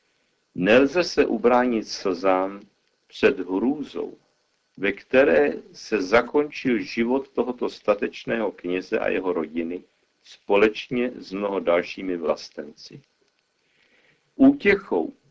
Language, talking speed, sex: Czech, 90 wpm, male